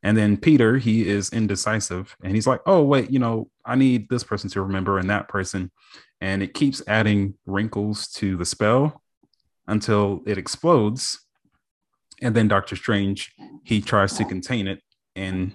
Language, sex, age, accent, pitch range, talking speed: English, male, 30-49, American, 90-110 Hz, 165 wpm